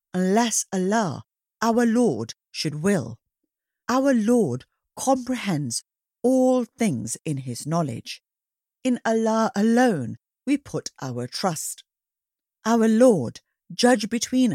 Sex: female